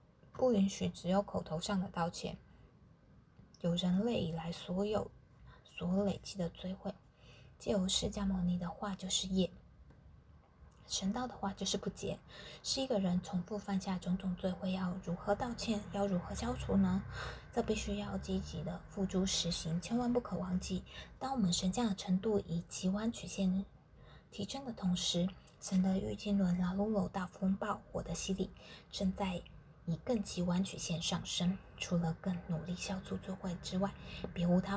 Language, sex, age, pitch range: Chinese, female, 20-39, 170-200 Hz